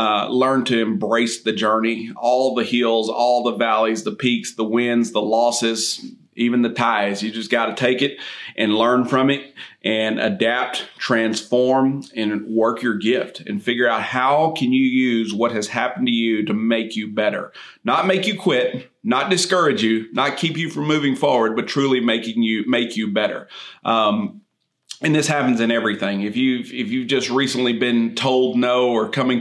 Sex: male